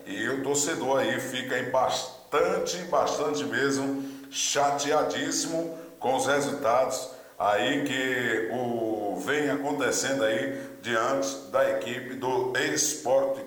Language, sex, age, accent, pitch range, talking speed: Portuguese, male, 60-79, Brazilian, 135-185 Hz, 100 wpm